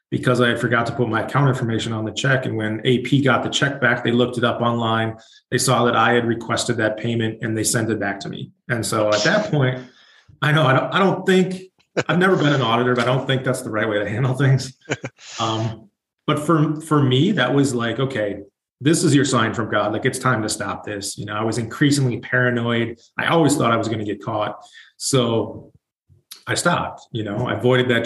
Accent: American